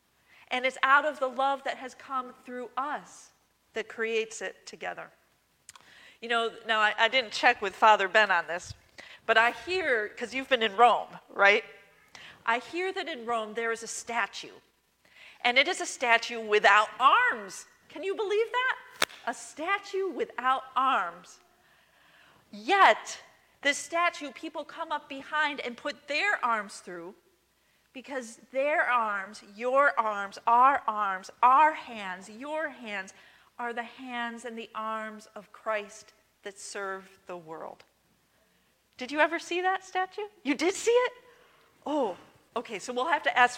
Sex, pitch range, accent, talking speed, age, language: female, 215-290 Hz, American, 155 wpm, 40-59, English